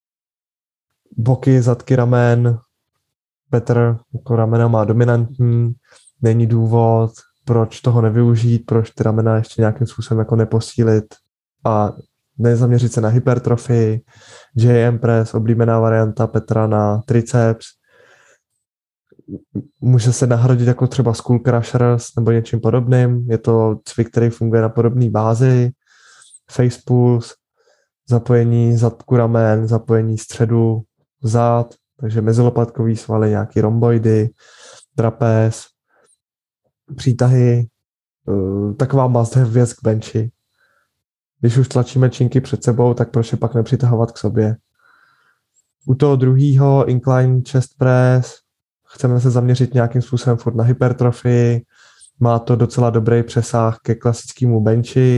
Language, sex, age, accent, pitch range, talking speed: Czech, male, 20-39, native, 115-125 Hz, 115 wpm